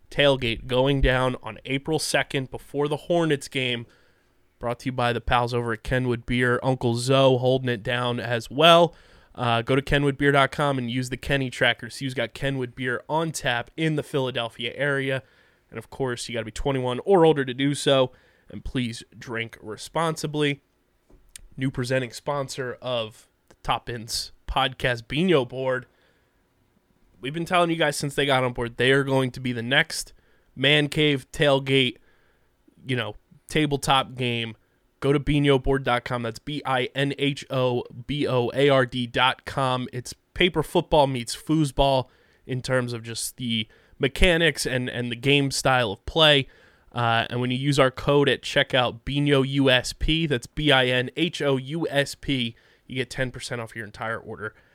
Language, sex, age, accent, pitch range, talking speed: English, male, 20-39, American, 120-140 Hz, 155 wpm